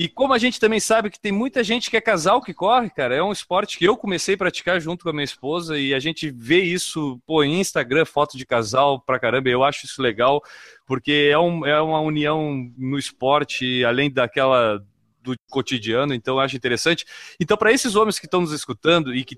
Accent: Brazilian